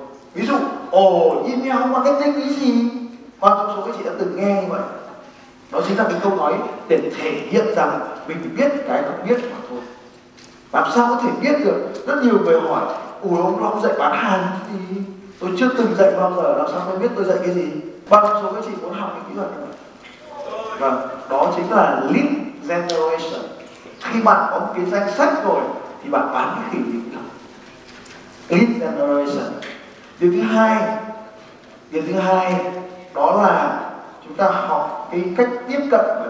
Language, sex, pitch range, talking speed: Vietnamese, male, 175-255 Hz, 195 wpm